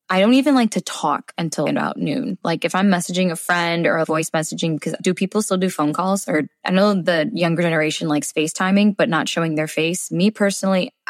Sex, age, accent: female, 10-29, American